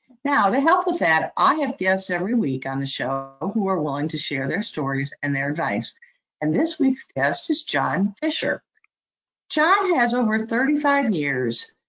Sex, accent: female, American